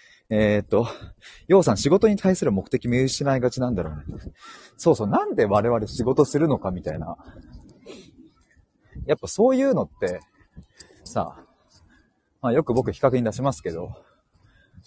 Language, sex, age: Japanese, male, 30-49